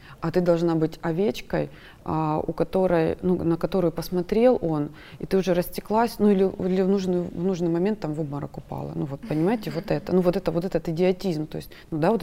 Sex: female